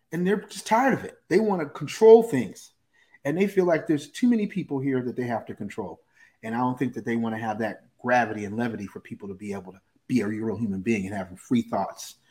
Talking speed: 260 wpm